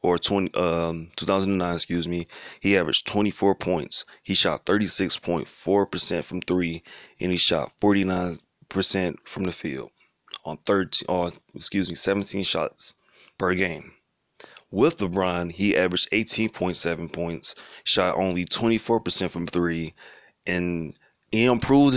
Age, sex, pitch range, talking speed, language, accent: 20-39, male, 90-100 Hz, 155 wpm, English, American